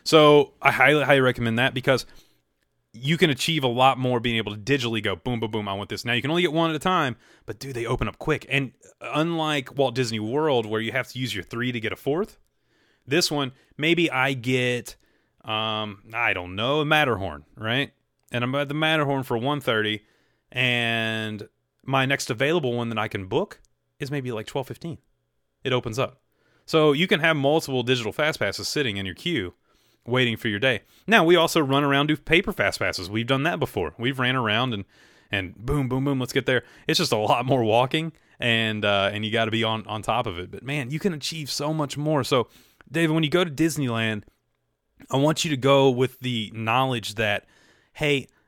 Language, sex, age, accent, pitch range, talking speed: English, male, 30-49, American, 110-145 Hz, 215 wpm